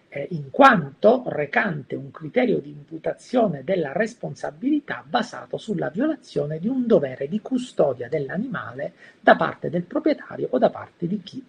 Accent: native